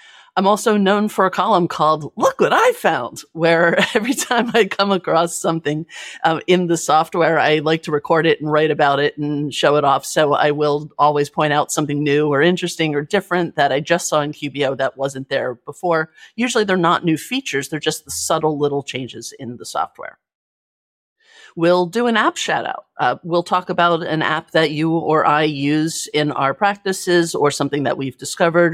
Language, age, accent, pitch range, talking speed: English, 40-59, American, 145-190 Hz, 200 wpm